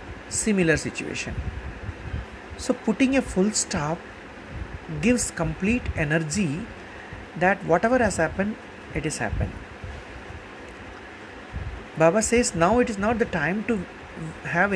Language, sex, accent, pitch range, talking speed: Hindi, male, native, 150-210 Hz, 110 wpm